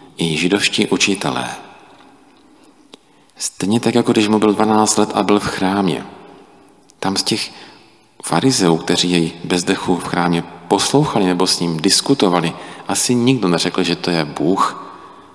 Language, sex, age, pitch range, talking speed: Czech, male, 40-59, 90-115 Hz, 140 wpm